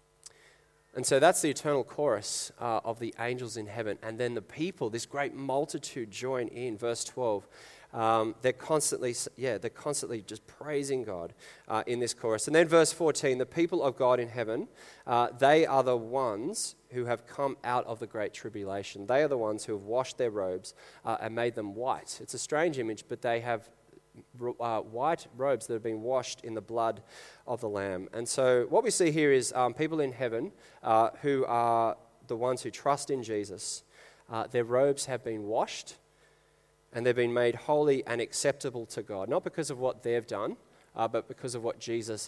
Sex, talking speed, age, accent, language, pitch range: male, 200 wpm, 20-39, Australian, English, 110-130 Hz